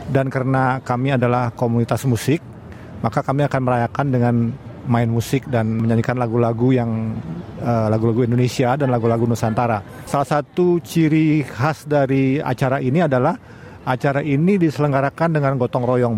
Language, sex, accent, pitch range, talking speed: Indonesian, male, native, 120-140 Hz, 135 wpm